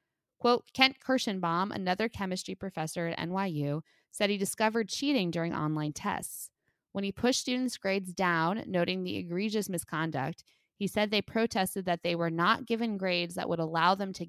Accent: American